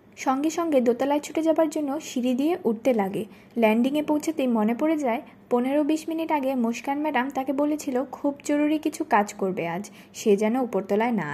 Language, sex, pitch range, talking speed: Bengali, female, 215-280 Hz, 175 wpm